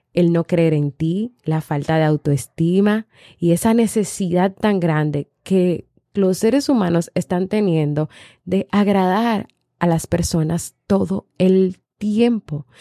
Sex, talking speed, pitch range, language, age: female, 130 wpm, 150-180 Hz, Spanish, 20-39